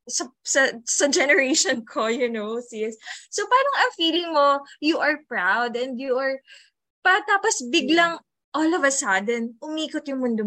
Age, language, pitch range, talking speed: 20-39, English, 215-290 Hz, 160 wpm